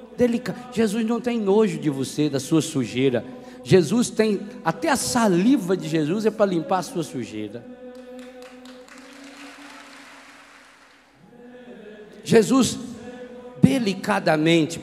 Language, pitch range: Portuguese, 170-240 Hz